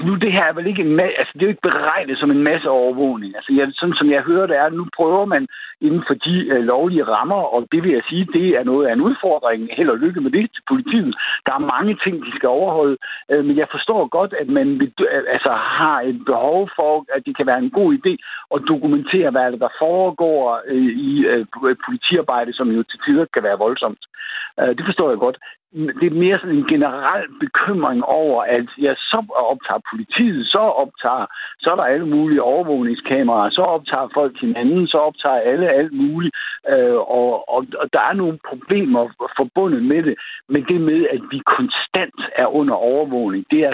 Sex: male